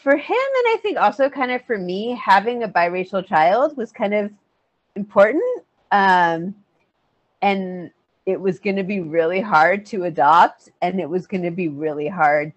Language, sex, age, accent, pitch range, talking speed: English, female, 30-49, American, 180-255 Hz, 175 wpm